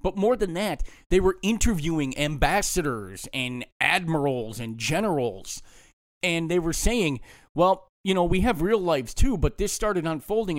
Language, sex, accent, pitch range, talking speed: English, male, American, 135-190 Hz, 160 wpm